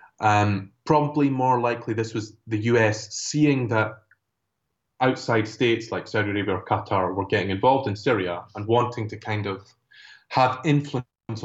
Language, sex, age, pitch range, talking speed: English, male, 20-39, 100-125 Hz, 150 wpm